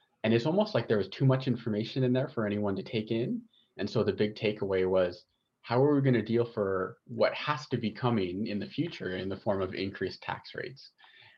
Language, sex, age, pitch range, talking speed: English, male, 30-49, 95-125 Hz, 230 wpm